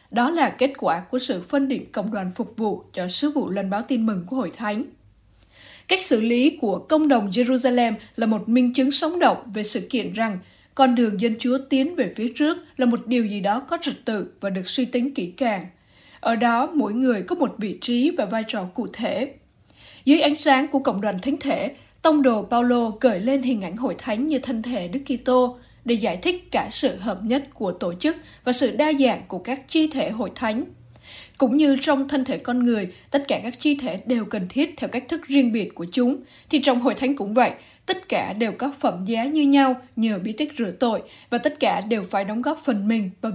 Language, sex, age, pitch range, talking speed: Vietnamese, female, 20-39, 220-275 Hz, 230 wpm